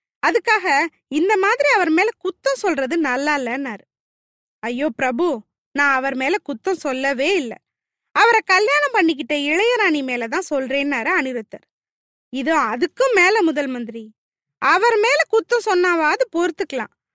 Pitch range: 275-385 Hz